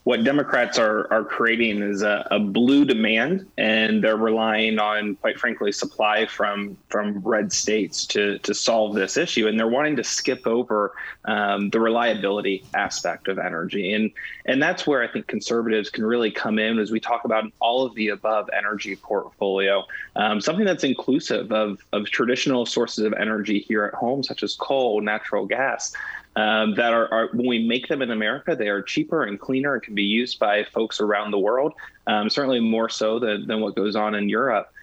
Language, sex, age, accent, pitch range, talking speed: English, male, 20-39, American, 105-120 Hz, 195 wpm